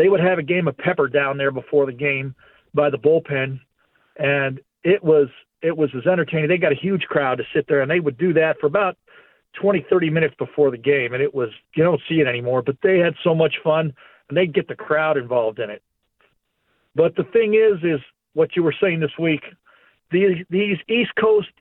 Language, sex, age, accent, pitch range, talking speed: English, male, 50-69, American, 145-200 Hz, 220 wpm